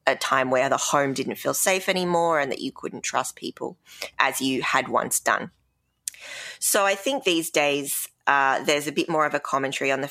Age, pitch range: 20-39, 135-175 Hz